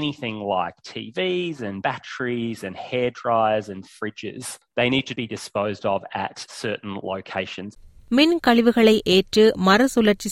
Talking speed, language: 135 wpm, Tamil